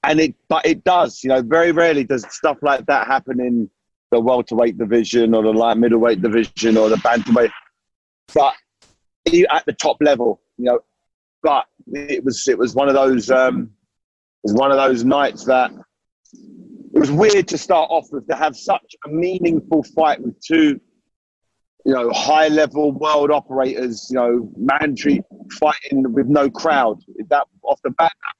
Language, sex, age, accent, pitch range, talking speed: English, male, 30-49, British, 115-155 Hz, 170 wpm